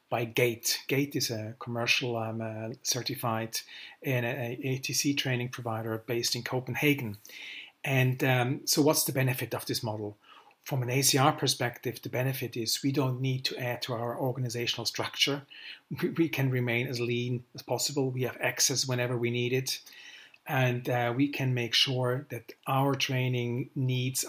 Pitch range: 120-140 Hz